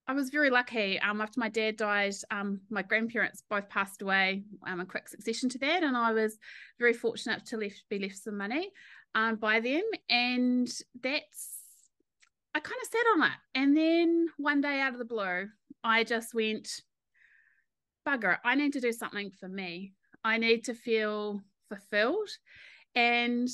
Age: 30-49